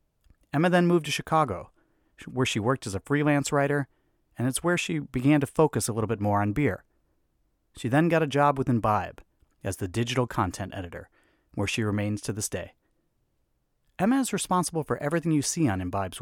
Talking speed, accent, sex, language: 190 wpm, American, male, English